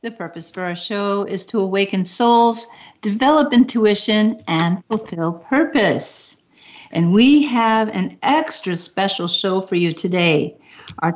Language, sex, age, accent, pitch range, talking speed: English, female, 50-69, American, 185-230 Hz, 135 wpm